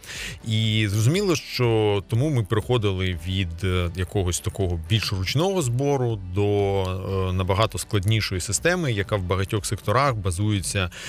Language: Ukrainian